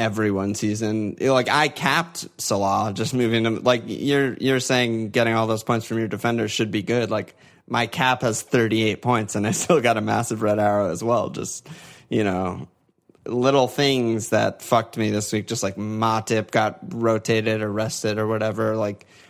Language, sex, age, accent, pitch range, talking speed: English, male, 20-39, American, 105-120 Hz, 185 wpm